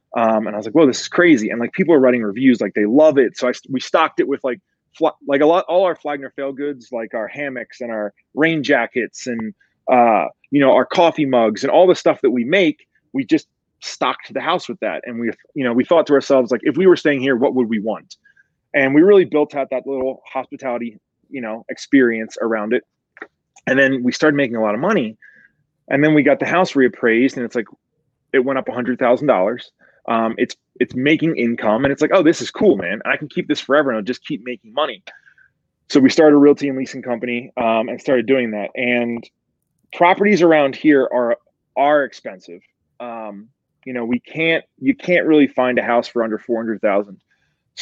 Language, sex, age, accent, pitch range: Japanese, male, 30-49, American, 115-150 Hz